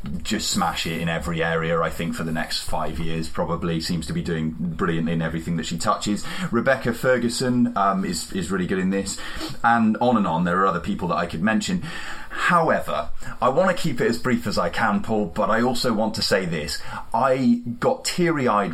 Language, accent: English, British